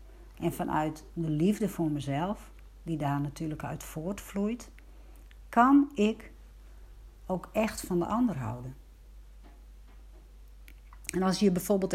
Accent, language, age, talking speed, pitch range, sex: Dutch, Dutch, 60-79, 115 wpm, 150-215 Hz, female